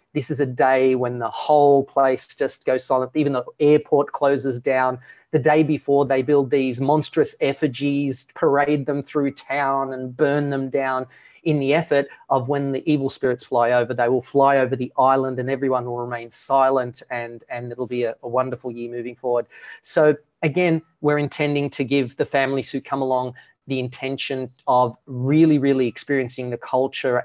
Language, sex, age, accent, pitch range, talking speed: English, male, 30-49, Australian, 125-145 Hz, 180 wpm